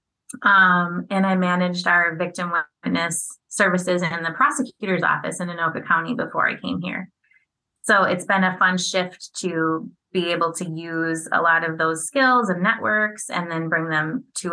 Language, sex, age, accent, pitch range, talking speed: English, female, 20-39, American, 170-205 Hz, 175 wpm